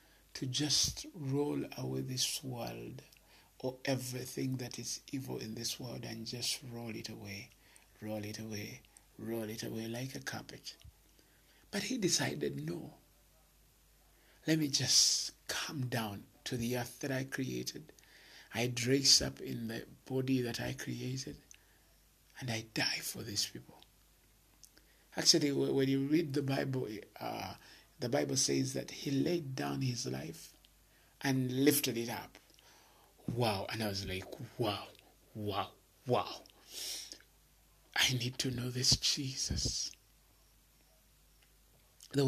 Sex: male